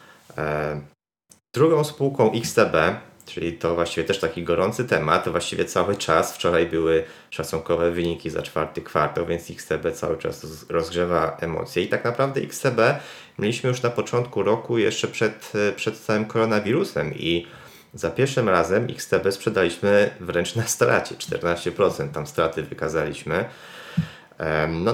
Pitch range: 80-100 Hz